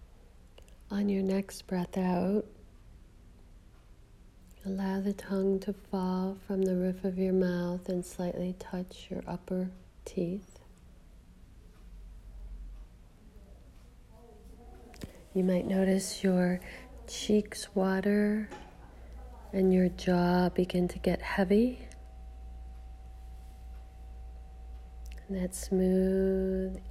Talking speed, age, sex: 85 wpm, 40-59, female